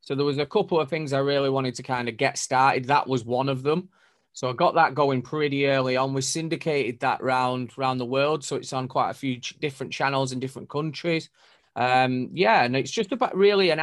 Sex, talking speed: male, 235 wpm